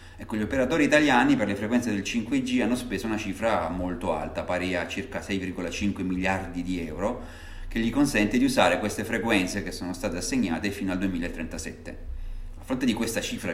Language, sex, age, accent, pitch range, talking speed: Italian, male, 30-49, native, 85-105 Hz, 175 wpm